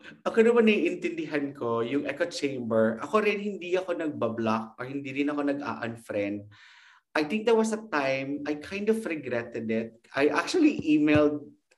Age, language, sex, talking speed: 30-49, English, male, 160 wpm